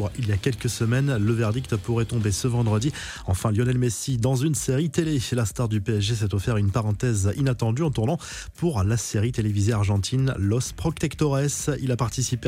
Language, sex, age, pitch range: French, male, 20-39, 110-130 Hz